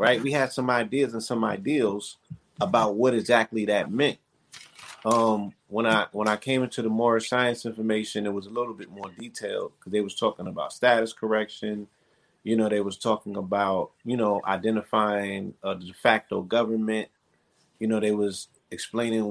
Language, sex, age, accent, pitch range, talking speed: English, male, 30-49, American, 105-120 Hz, 175 wpm